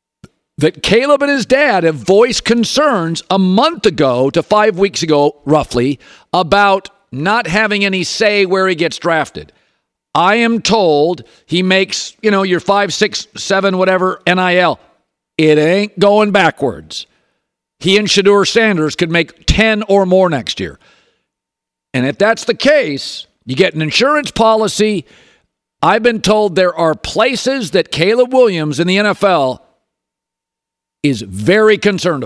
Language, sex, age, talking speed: English, male, 50-69, 145 wpm